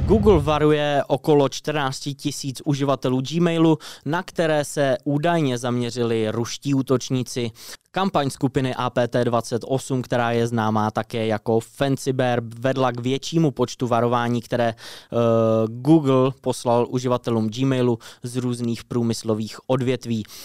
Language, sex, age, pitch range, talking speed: Czech, male, 20-39, 115-140 Hz, 110 wpm